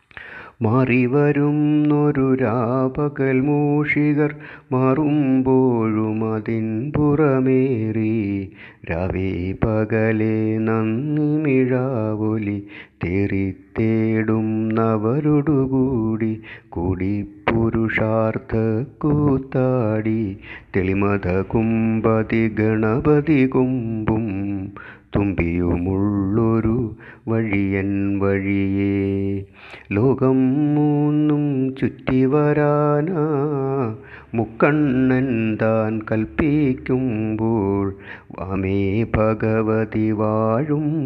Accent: native